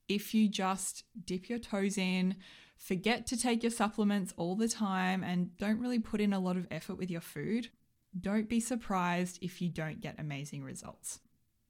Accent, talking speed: Australian, 185 wpm